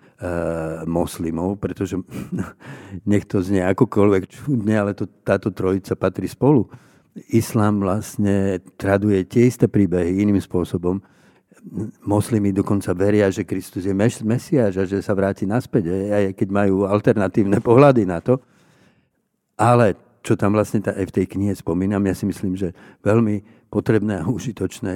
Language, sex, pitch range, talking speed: Slovak, male, 95-110 Hz, 140 wpm